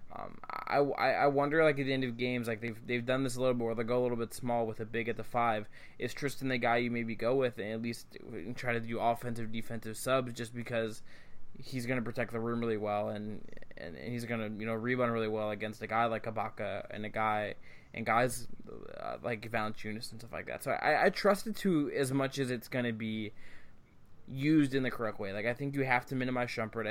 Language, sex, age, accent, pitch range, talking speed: English, male, 20-39, American, 110-125 Hz, 250 wpm